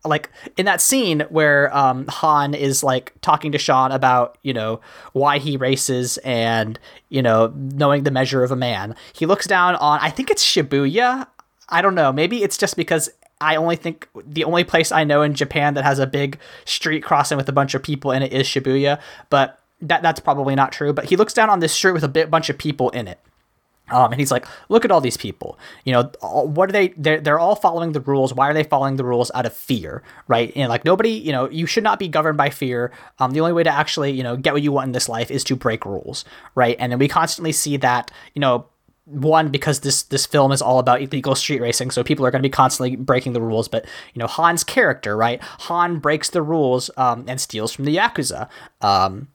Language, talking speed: English, 240 wpm